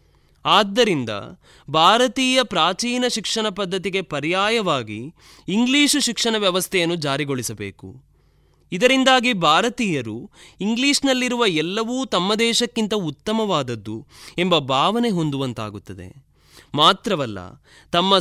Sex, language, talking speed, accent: male, Kannada, 75 wpm, native